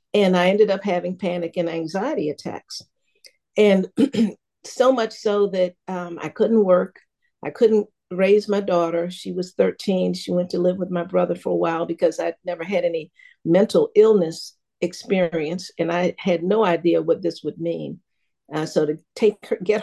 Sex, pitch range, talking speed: female, 170-205 Hz, 180 wpm